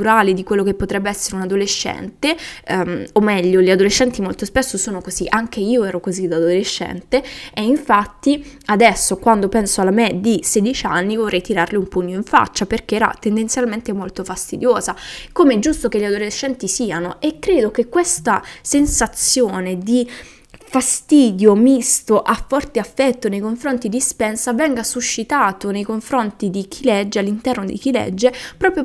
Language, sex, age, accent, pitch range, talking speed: Italian, female, 20-39, native, 205-270 Hz, 160 wpm